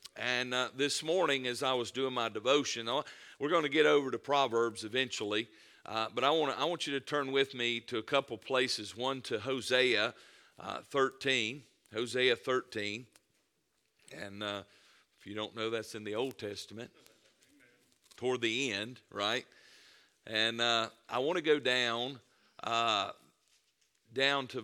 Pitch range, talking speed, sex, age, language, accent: 115-140 Hz, 165 wpm, male, 50-69, English, American